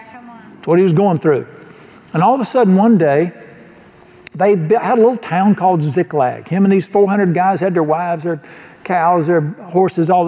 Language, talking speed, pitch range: English, 185 wpm, 155-230 Hz